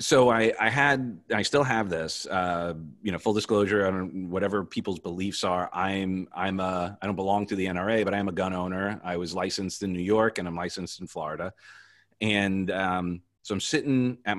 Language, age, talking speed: English, 30-49, 210 wpm